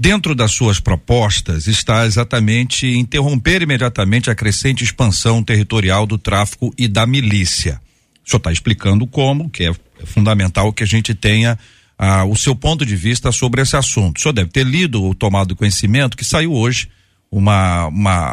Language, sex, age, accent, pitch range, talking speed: Portuguese, male, 50-69, Brazilian, 105-135 Hz, 165 wpm